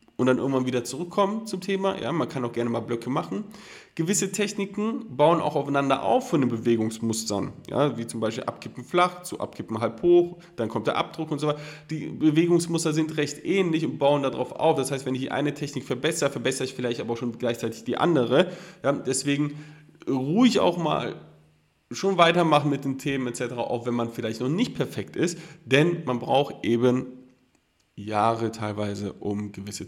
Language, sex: German, male